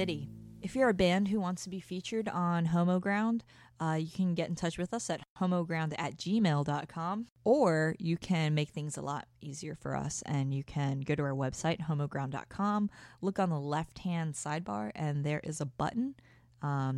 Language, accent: English, American